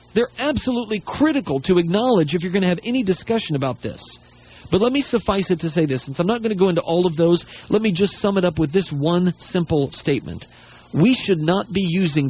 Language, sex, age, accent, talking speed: English, male, 40-59, American, 235 wpm